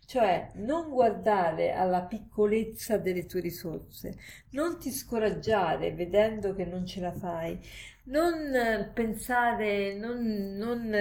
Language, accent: Italian, native